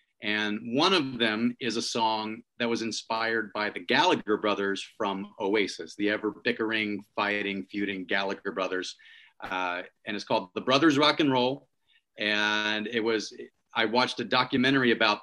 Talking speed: 160 wpm